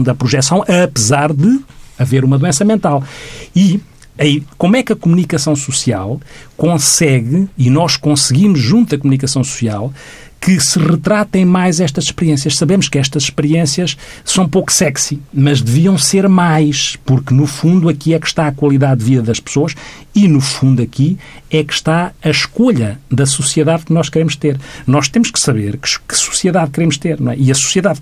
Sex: male